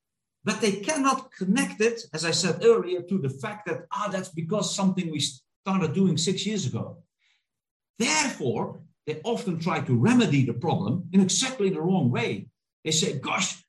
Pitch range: 140-215 Hz